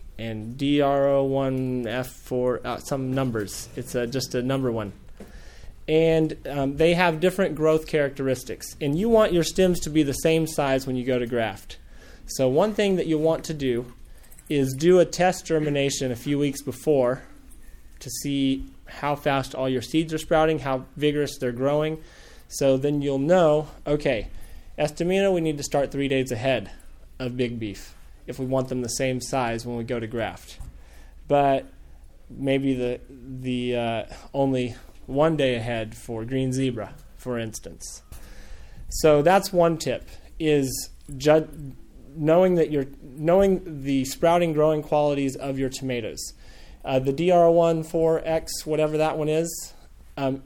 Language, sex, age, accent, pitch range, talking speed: English, male, 20-39, American, 125-155 Hz, 160 wpm